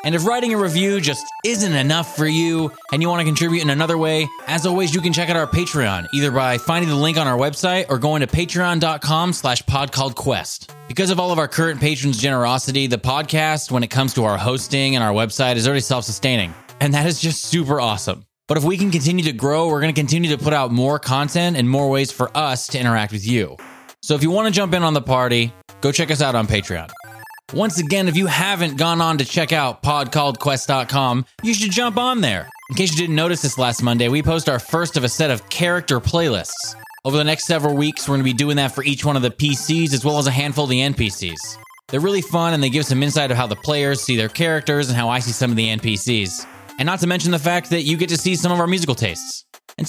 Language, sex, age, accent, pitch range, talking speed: English, male, 20-39, American, 125-170 Hz, 250 wpm